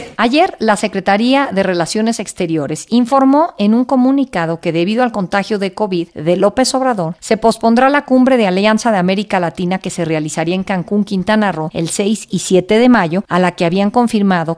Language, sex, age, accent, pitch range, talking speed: Spanish, female, 50-69, Mexican, 170-220 Hz, 190 wpm